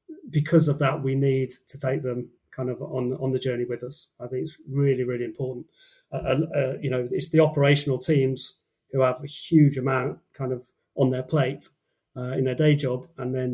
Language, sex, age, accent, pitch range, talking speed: English, male, 30-49, British, 125-145 Hz, 210 wpm